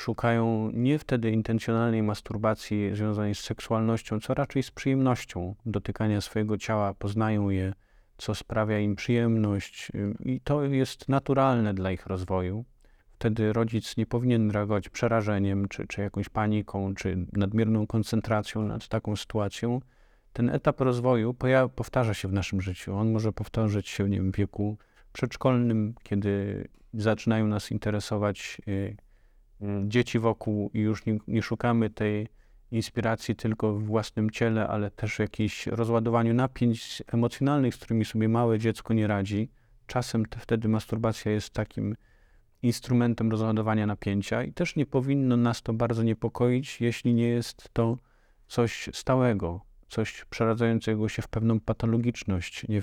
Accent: native